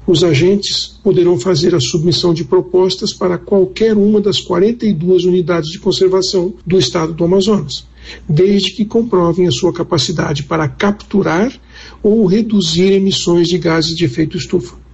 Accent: Brazilian